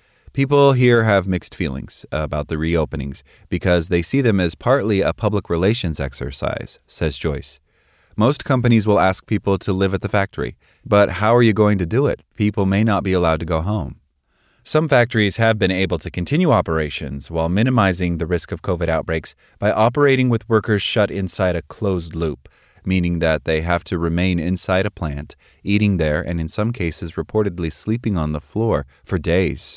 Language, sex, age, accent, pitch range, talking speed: English, male, 30-49, American, 80-105 Hz, 185 wpm